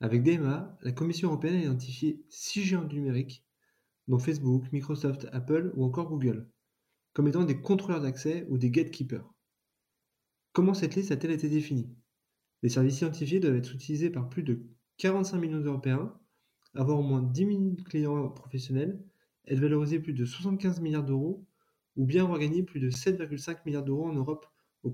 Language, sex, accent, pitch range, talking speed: French, male, French, 130-165 Hz, 170 wpm